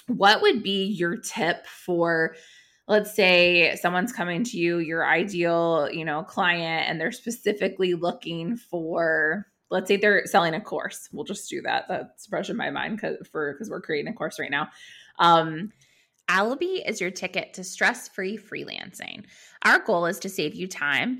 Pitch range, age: 170-225 Hz, 20-39